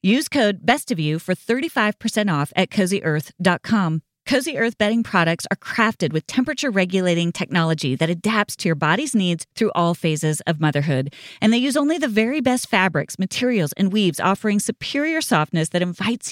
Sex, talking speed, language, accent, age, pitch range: female, 175 wpm, English, American, 30-49, 165-235 Hz